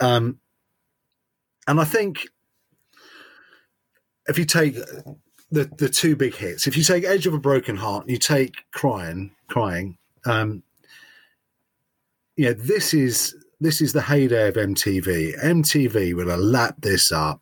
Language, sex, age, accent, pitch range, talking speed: English, male, 40-59, British, 110-150 Hz, 145 wpm